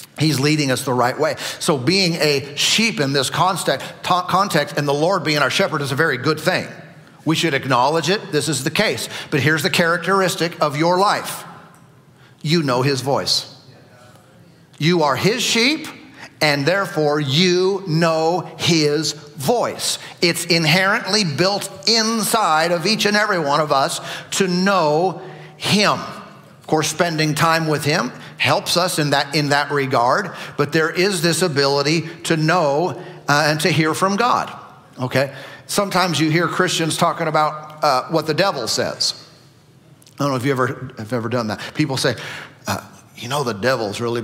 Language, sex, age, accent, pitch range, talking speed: English, male, 50-69, American, 140-185 Hz, 165 wpm